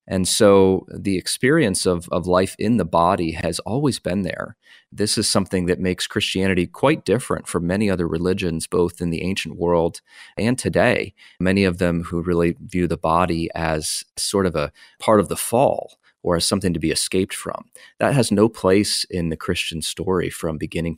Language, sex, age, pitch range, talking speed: English, male, 30-49, 85-100 Hz, 190 wpm